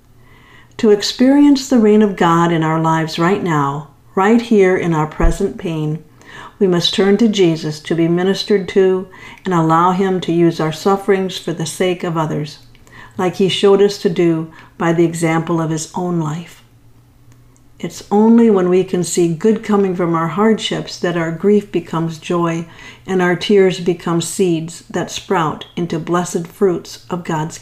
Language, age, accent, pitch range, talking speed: English, 50-69, American, 160-200 Hz, 170 wpm